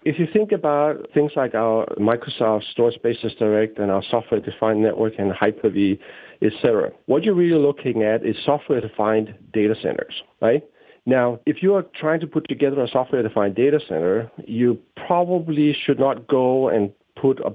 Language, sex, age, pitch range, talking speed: English, male, 50-69, 110-135 Hz, 170 wpm